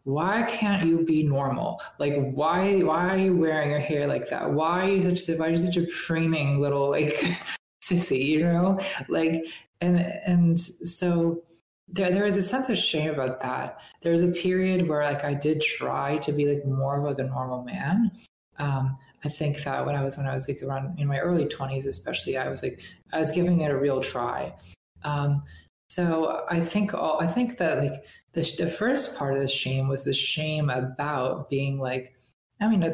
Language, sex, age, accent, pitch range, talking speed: English, female, 20-39, American, 140-175 Hz, 210 wpm